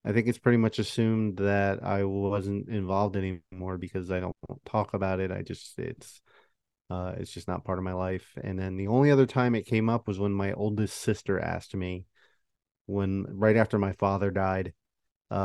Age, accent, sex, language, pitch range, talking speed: 30-49, American, male, English, 95-110 Hz, 195 wpm